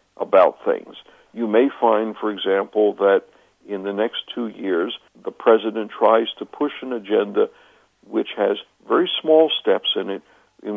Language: English